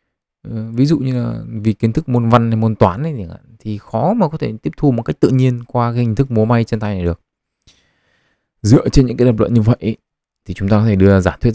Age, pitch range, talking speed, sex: 20-39, 85-110 Hz, 265 wpm, male